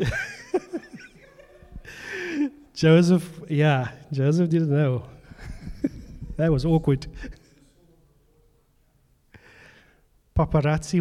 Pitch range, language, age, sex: 140-180 Hz, English, 30-49, male